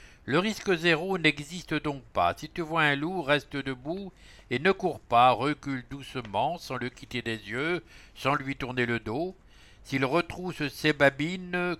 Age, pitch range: 60-79, 125-160 Hz